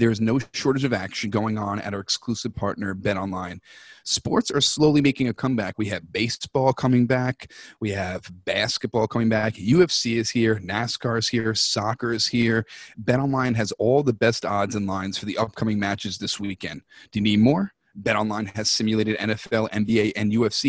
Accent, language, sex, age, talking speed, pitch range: American, English, male, 30-49, 190 wpm, 105-120 Hz